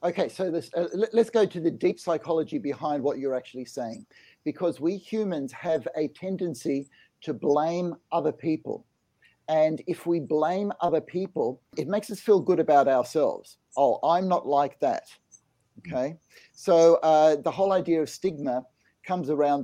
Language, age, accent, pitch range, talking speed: English, 50-69, Australian, 145-175 Hz, 160 wpm